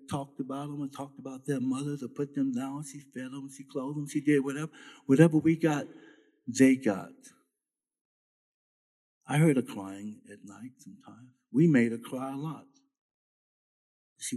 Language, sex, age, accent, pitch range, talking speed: English, male, 60-79, American, 125-215 Hz, 165 wpm